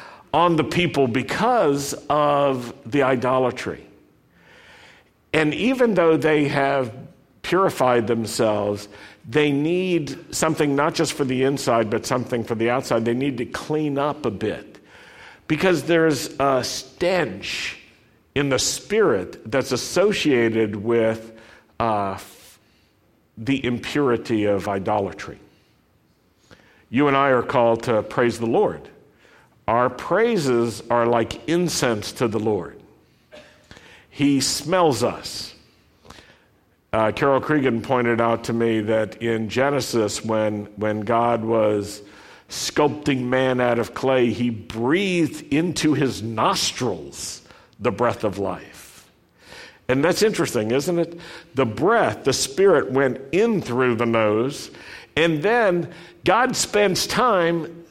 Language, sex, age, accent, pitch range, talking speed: English, male, 50-69, American, 115-150 Hz, 120 wpm